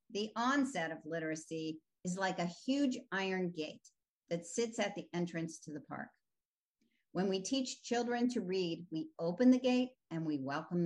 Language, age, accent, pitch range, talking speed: English, 50-69, American, 170-240 Hz, 170 wpm